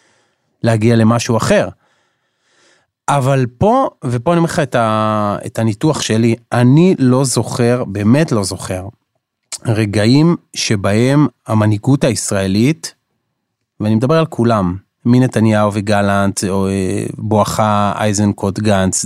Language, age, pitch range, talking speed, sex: Hebrew, 30-49, 105-125 Hz, 100 wpm, male